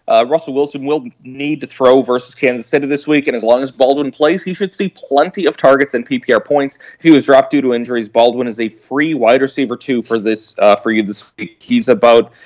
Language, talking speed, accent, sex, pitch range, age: English, 240 wpm, American, male, 125-145 Hz, 30-49